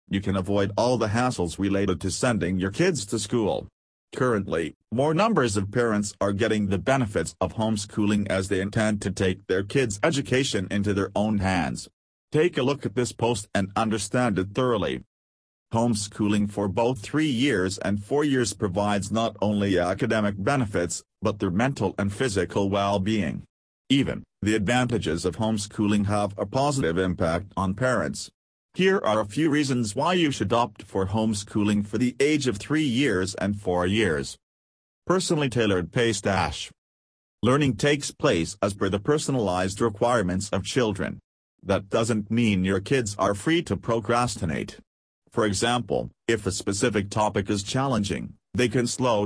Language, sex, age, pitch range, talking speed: English, male, 40-59, 95-125 Hz, 160 wpm